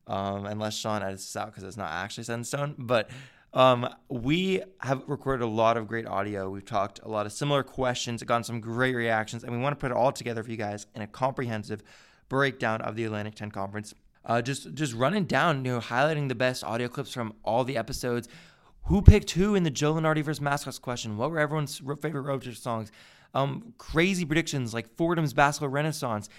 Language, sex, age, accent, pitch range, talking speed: English, male, 20-39, American, 115-145 Hz, 205 wpm